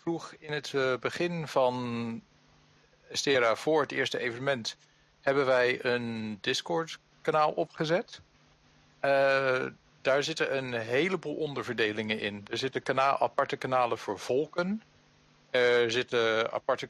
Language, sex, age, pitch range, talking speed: Dutch, male, 50-69, 110-125 Hz, 115 wpm